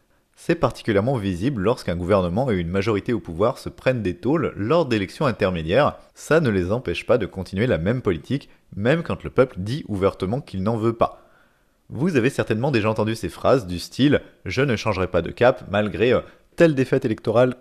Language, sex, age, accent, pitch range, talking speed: French, male, 30-49, French, 95-135 Hz, 190 wpm